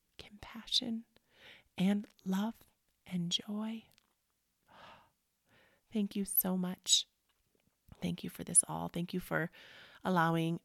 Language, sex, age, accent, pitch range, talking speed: English, female, 30-49, American, 170-195 Hz, 100 wpm